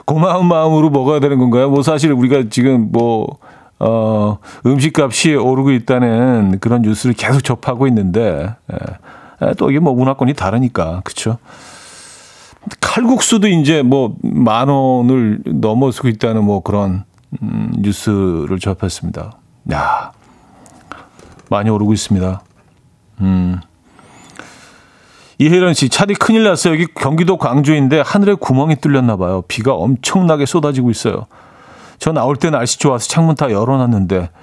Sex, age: male, 40-59